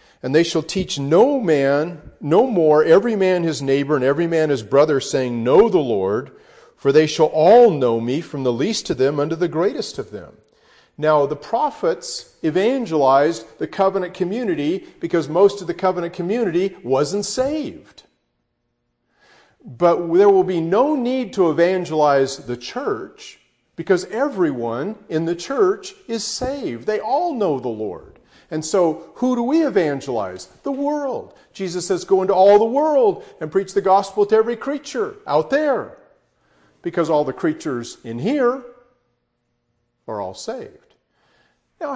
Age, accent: 40-59, American